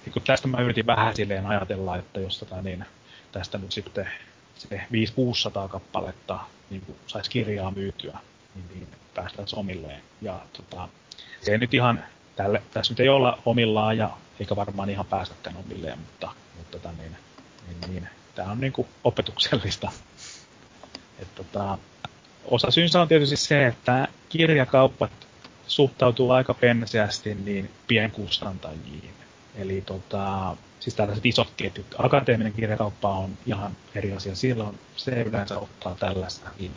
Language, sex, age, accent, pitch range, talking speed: Finnish, male, 30-49, native, 100-120 Hz, 135 wpm